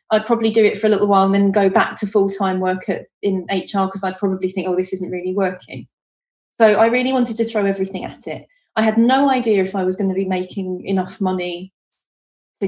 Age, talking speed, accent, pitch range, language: 30-49, 235 wpm, British, 190-220 Hz, English